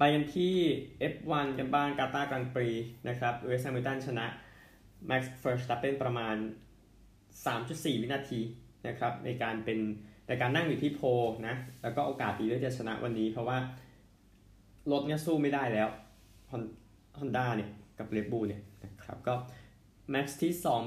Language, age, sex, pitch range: Thai, 20-39, male, 110-135 Hz